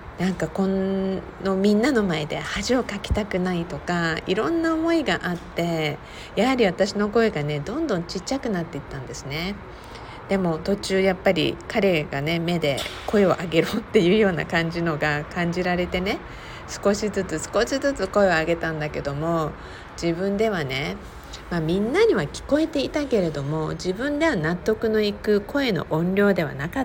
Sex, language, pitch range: female, Japanese, 150-200 Hz